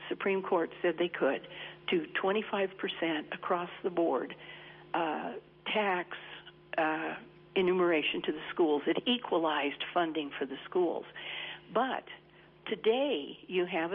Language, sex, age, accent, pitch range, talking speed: English, female, 60-79, American, 165-220 Hz, 115 wpm